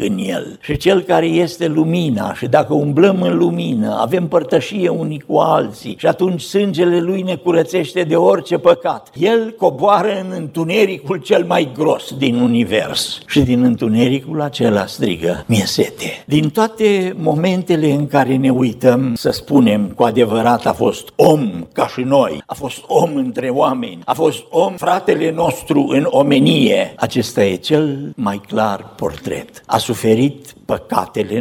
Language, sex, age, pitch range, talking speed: Romanian, male, 60-79, 110-175 Hz, 155 wpm